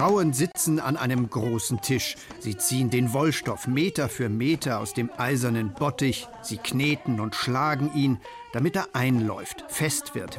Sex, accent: male, German